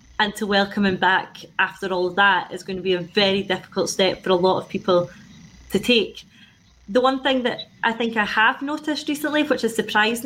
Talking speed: 215 wpm